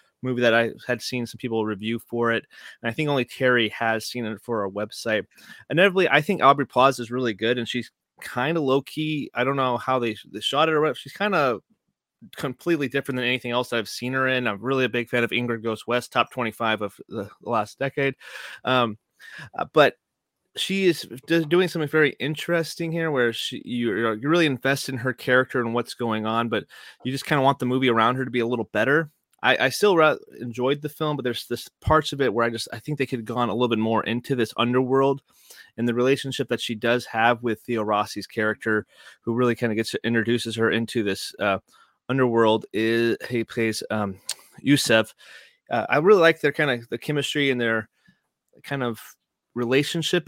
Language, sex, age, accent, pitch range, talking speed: English, male, 30-49, American, 115-140 Hz, 210 wpm